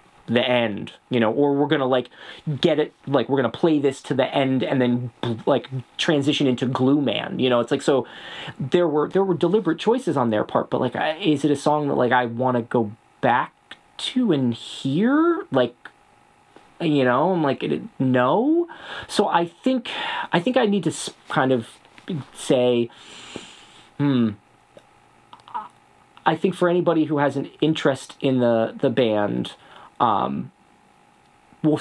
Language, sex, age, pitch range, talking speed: English, male, 20-39, 120-165 Hz, 165 wpm